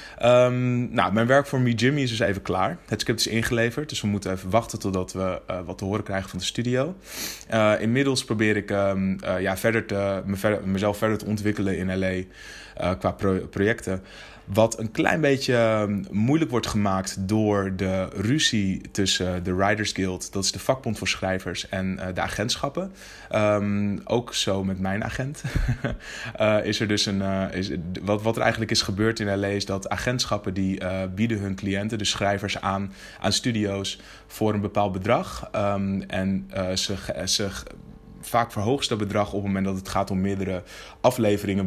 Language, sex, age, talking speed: Dutch, male, 20-39, 175 wpm